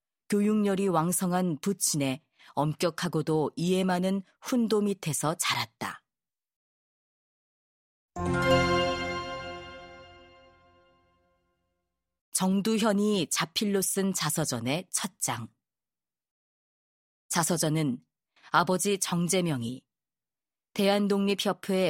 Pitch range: 135-195 Hz